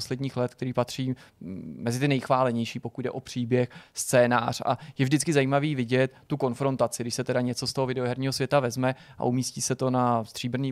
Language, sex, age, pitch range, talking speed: Czech, male, 20-39, 130-150 Hz, 190 wpm